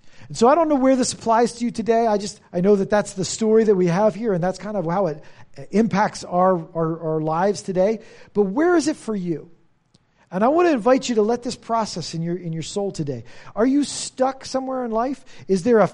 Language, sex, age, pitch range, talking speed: English, male, 40-59, 155-230 Hz, 245 wpm